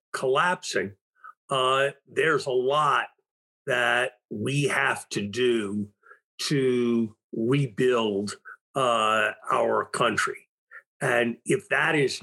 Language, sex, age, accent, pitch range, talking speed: English, male, 50-69, American, 120-145 Hz, 95 wpm